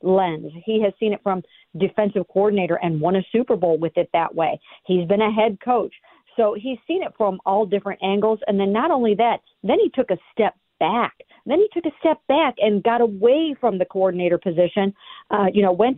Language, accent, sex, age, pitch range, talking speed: English, American, female, 50-69, 180-225 Hz, 220 wpm